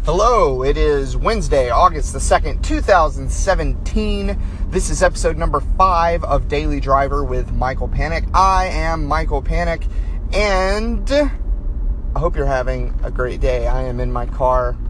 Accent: American